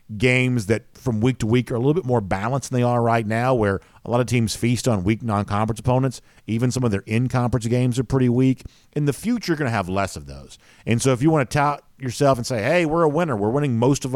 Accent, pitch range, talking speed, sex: American, 100-125 Hz, 270 wpm, male